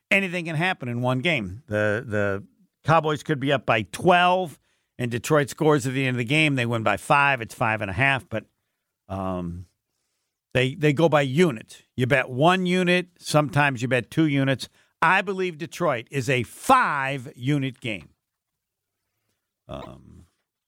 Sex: male